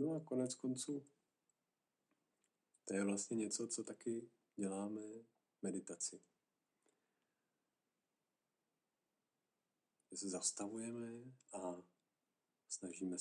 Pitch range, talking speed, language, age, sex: 95-110 Hz, 75 wpm, Czech, 40-59, male